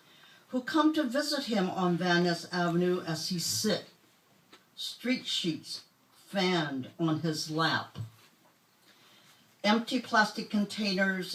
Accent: American